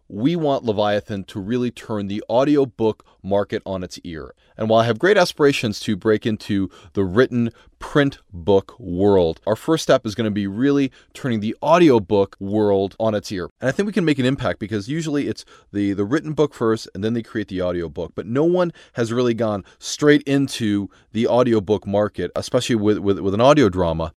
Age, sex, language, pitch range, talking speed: 30-49, male, English, 95-125 Hz, 200 wpm